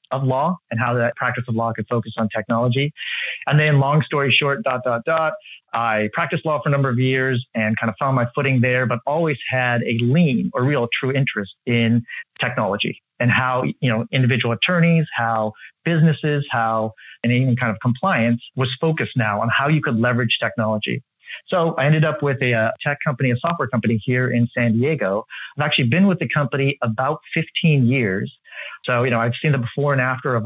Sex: male